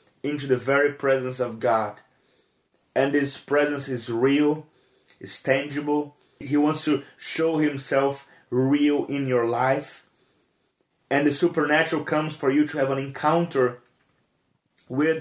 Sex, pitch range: male, 130-155 Hz